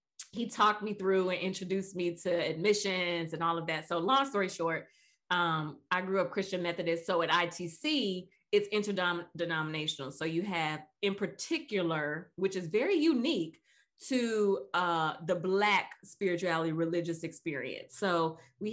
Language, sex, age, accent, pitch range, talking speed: English, female, 20-39, American, 170-205 Hz, 145 wpm